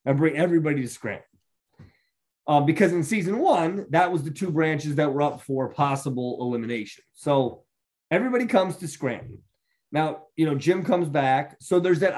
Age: 30-49